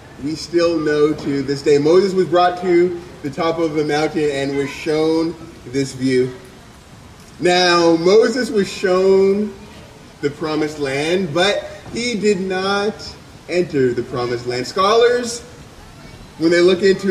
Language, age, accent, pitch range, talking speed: English, 30-49, American, 155-195 Hz, 140 wpm